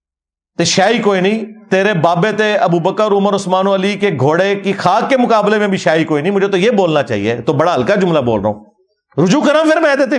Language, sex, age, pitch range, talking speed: Urdu, male, 50-69, 130-200 Hz, 225 wpm